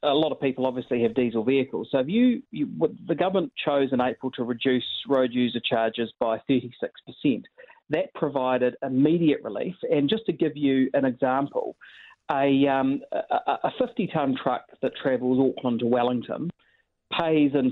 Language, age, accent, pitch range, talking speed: English, 30-49, Australian, 125-170 Hz, 150 wpm